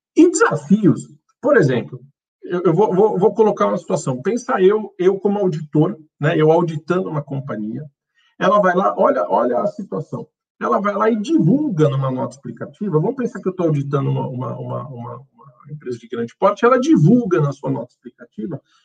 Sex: male